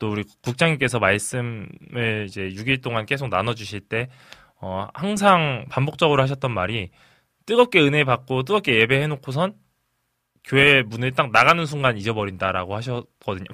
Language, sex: Korean, male